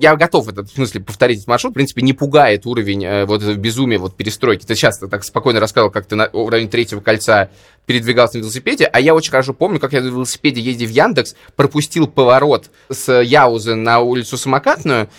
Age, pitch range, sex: 20-39, 115-145 Hz, male